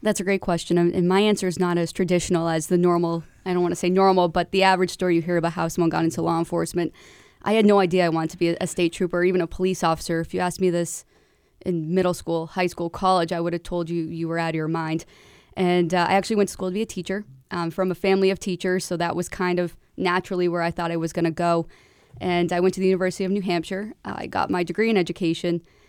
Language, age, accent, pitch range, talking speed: English, 20-39, American, 170-185 Hz, 270 wpm